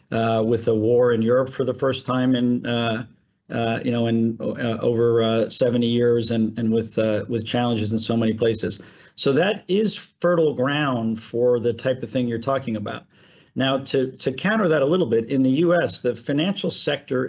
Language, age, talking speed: English, 50-69, 200 wpm